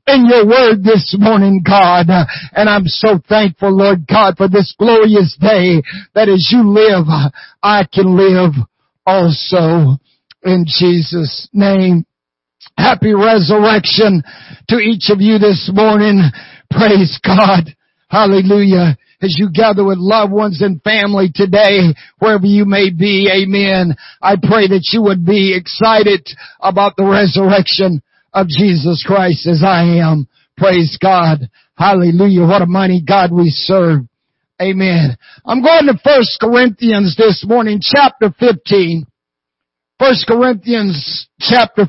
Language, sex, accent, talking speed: English, male, American, 130 wpm